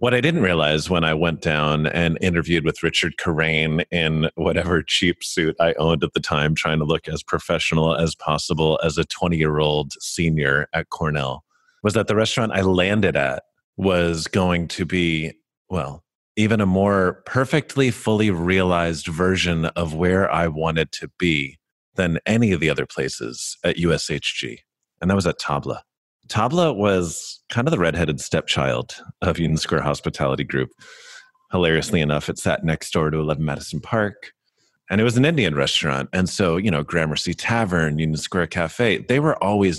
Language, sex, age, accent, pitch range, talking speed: English, male, 30-49, American, 80-95 Hz, 170 wpm